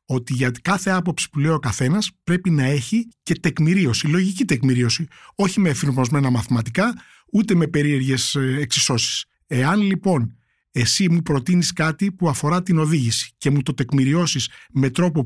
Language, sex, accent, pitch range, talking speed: Greek, male, native, 135-180 Hz, 150 wpm